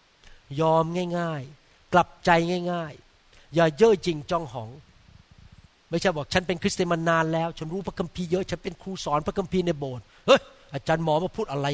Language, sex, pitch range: Thai, male, 140-210 Hz